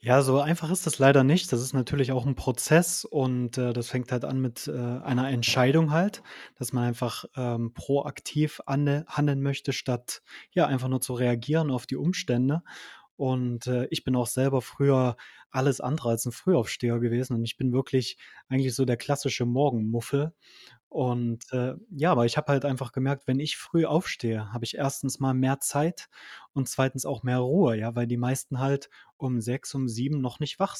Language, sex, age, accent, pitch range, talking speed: German, male, 20-39, German, 125-140 Hz, 195 wpm